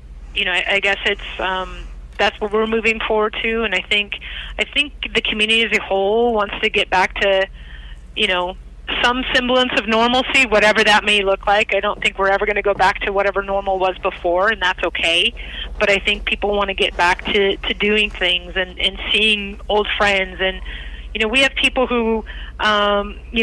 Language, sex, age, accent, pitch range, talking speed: English, female, 30-49, American, 190-225 Hz, 210 wpm